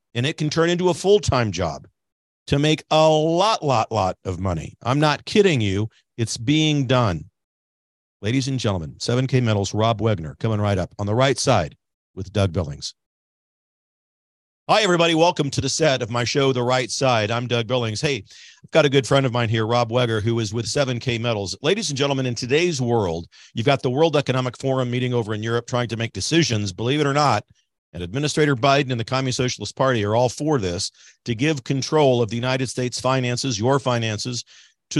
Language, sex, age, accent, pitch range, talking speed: English, male, 50-69, American, 115-145 Hz, 200 wpm